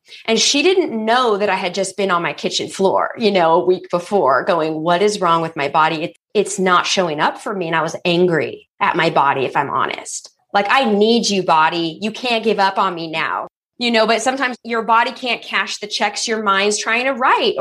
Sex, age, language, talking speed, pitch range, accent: female, 20-39, English, 230 wpm, 185-245 Hz, American